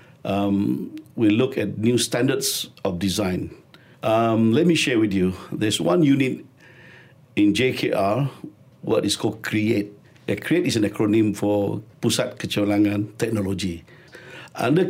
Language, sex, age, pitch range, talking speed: English, male, 60-79, 105-130 Hz, 130 wpm